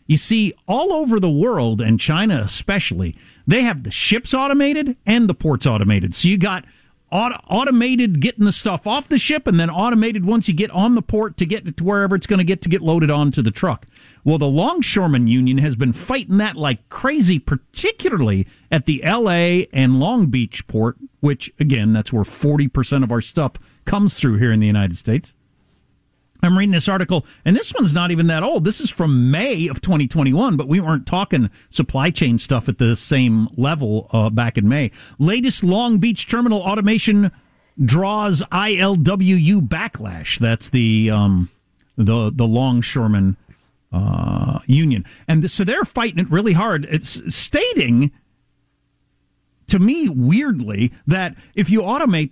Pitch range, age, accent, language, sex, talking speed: 125-200 Hz, 50-69, American, English, male, 170 wpm